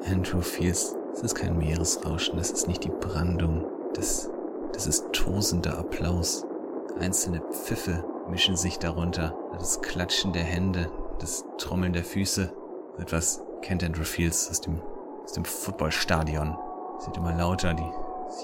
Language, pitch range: German, 85-100 Hz